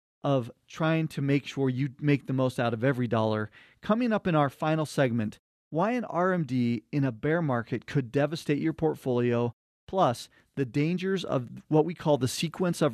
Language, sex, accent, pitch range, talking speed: English, male, American, 130-155 Hz, 185 wpm